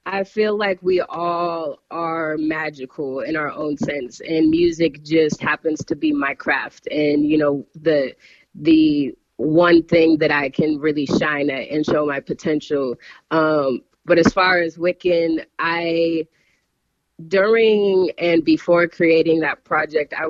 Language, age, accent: English, 20-39, American